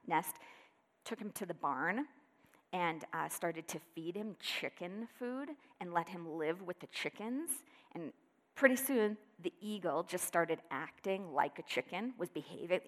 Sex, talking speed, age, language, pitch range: female, 160 wpm, 40-59, English, 175-250 Hz